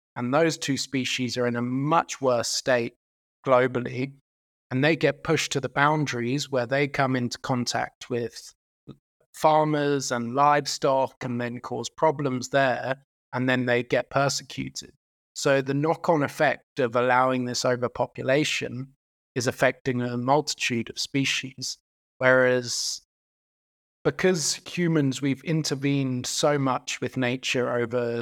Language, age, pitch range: English, 30-49, 125-145 Hz